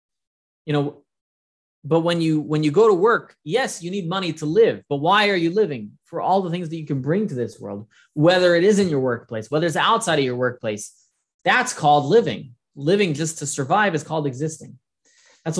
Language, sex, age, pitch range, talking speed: English, male, 20-39, 125-175 Hz, 210 wpm